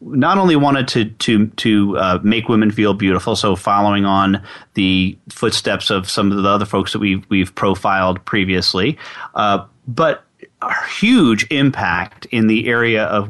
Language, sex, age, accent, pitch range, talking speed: English, male, 30-49, American, 100-125 Hz, 160 wpm